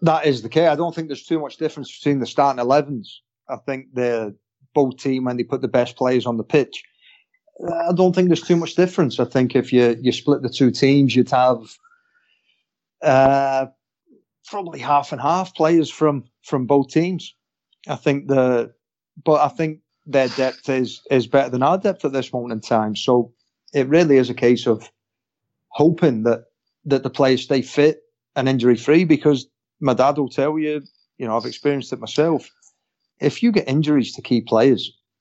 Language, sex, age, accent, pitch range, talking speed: English, male, 40-59, British, 120-150 Hz, 190 wpm